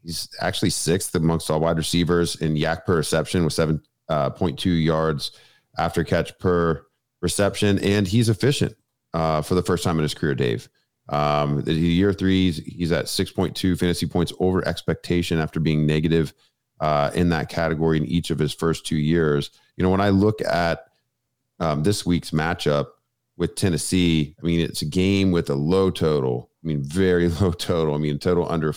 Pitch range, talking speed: 75-90 Hz, 180 wpm